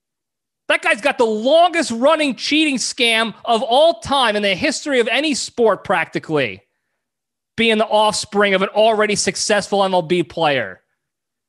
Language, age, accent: English, 30-49, American